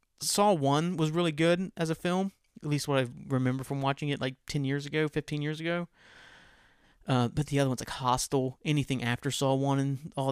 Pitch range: 130-155 Hz